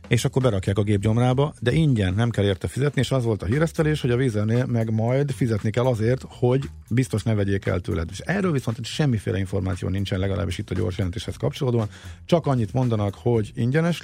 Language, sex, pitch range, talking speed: Hungarian, male, 95-125 Hz, 200 wpm